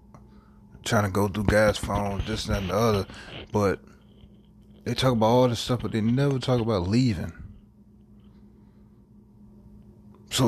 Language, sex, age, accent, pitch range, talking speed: English, male, 30-49, American, 100-110 Hz, 145 wpm